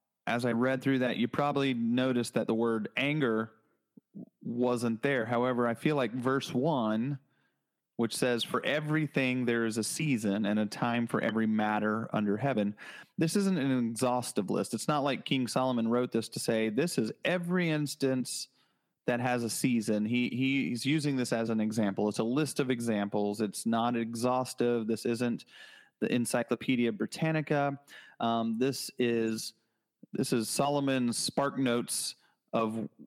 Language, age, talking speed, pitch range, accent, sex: English, 30-49, 160 wpm, 110-135 Hz, American, male